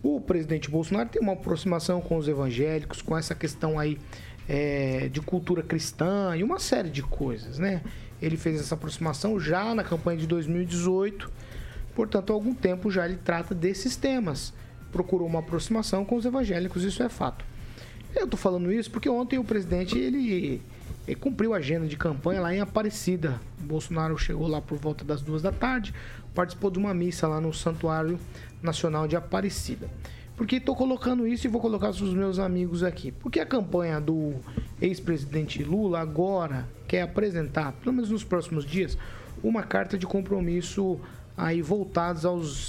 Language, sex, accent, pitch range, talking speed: Portuguese, male, Brazilian, 155-200 Hz, 170 wpm